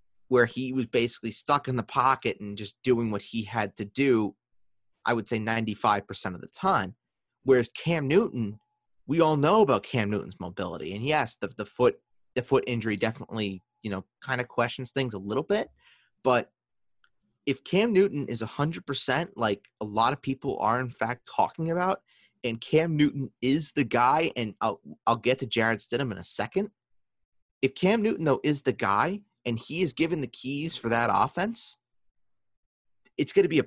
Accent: American